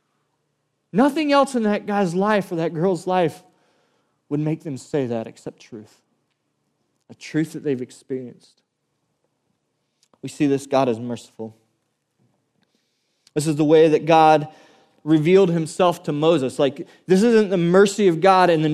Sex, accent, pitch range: male, American, 135-180 Hz